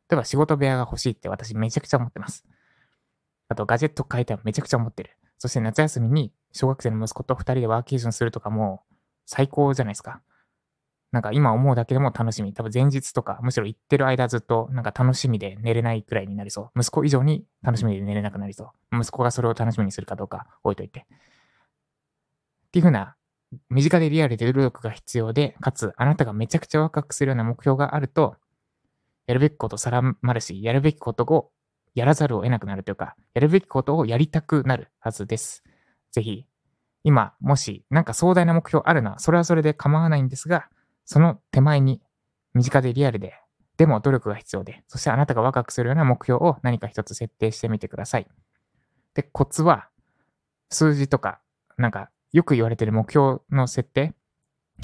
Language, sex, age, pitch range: Japanese, male, 20-39, 115-145 Hz